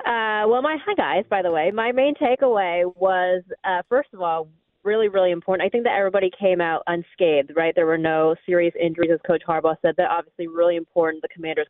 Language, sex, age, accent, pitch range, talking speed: English, female, 30-49, American, 170-215 Hz, 210 wpm